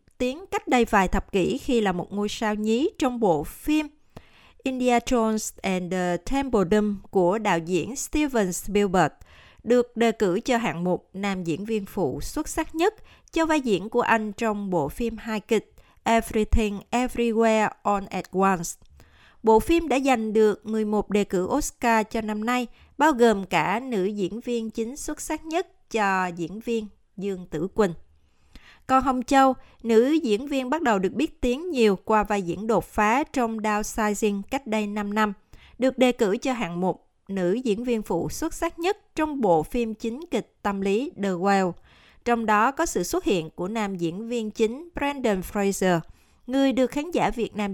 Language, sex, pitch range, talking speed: Vietnamese, female, 195-250 Hz, 185 wpm